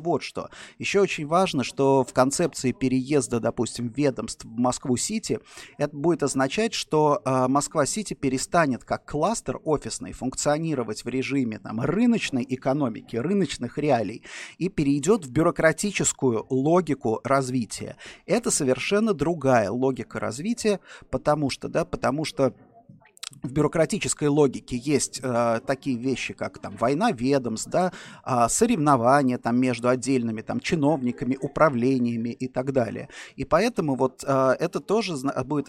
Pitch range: 125-165 Hz